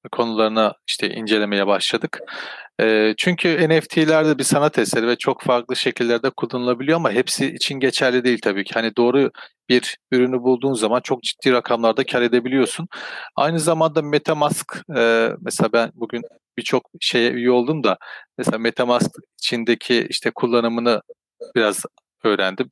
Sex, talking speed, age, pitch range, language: male, 130 wpm, 40-59, 115-140 Hz, Turkish